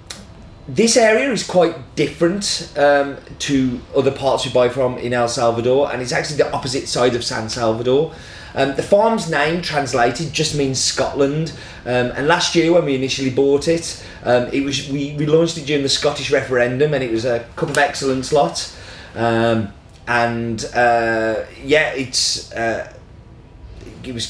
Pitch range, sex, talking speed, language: 115-145 Hz, male, 170 wpm, English